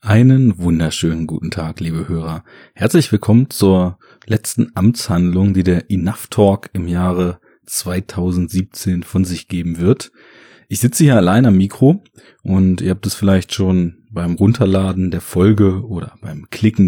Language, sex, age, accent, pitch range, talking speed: German, male, 30-49, German, 90-110 Hz, 145 wpm